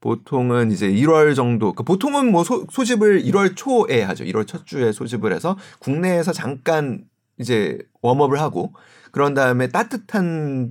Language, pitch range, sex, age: Korean, 125-190 Hz, male, 30-49